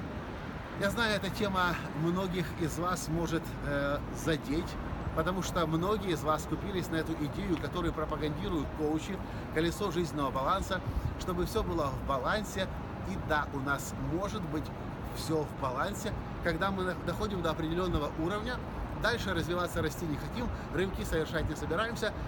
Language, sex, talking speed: Russian, male, 145 wpm